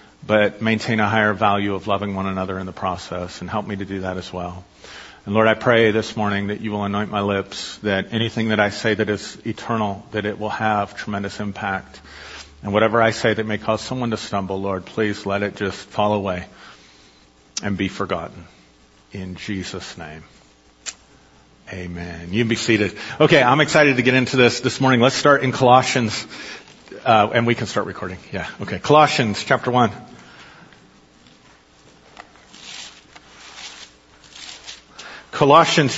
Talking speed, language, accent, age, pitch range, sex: 165 wpm, English, American, 40-59, 95-120 Hz, male